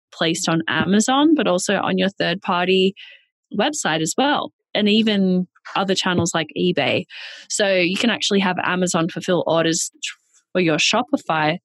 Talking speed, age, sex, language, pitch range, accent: 150 wpm, 20-39, female, English, 170-225 Hz, Australian